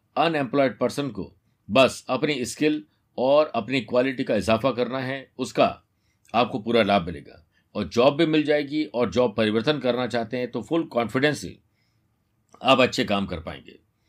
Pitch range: 110-140 Hz